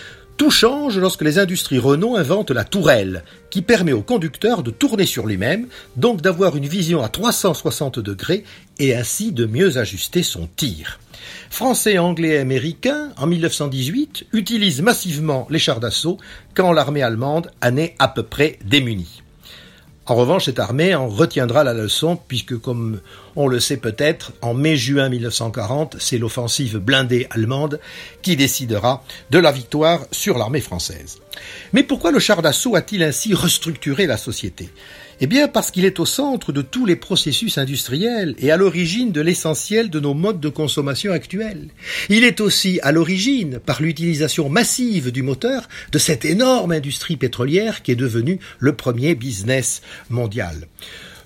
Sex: male